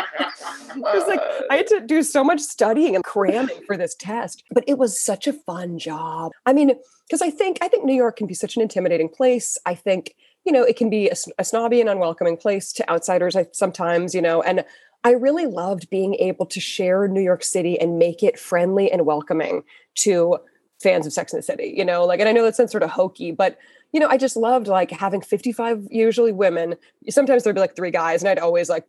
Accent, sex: American, female